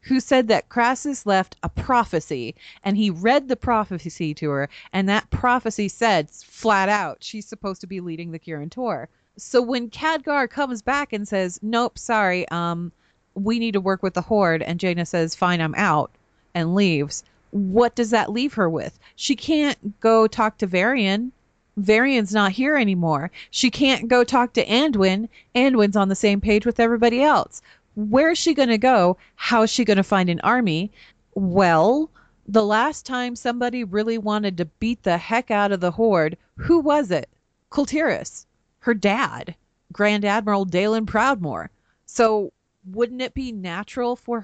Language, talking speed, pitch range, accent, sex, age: English, 170 wpm, 180-240 Hz, American, female, 30-49